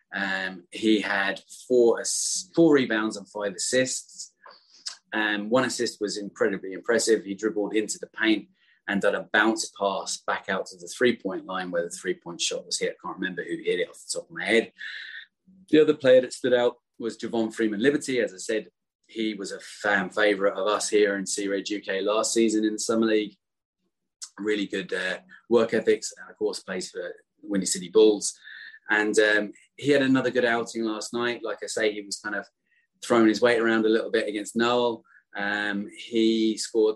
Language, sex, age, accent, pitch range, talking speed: English, male, 30-49, British, 105-170 Hz, 200 wpm